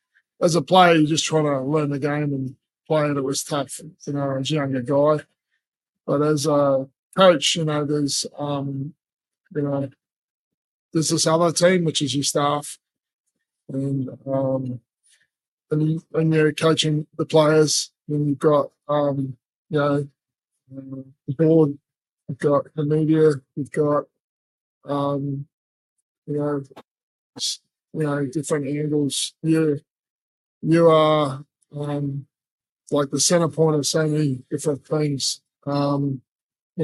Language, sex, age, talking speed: English, male, 20-39, 135 wpm